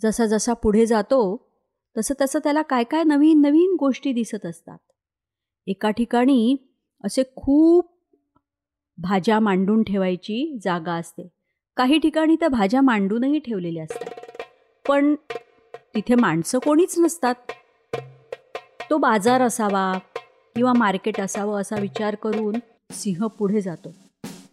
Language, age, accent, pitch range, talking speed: Marathi, 30-49, native, 200-265 Hz, 115 wpm